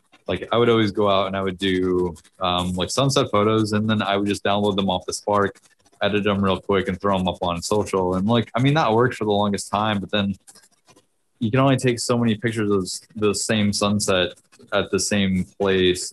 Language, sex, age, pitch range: English, male, 20-39, 95-110 Hz